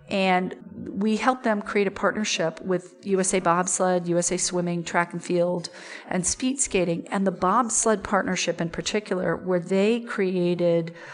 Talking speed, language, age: 145 wpm, English, 40-59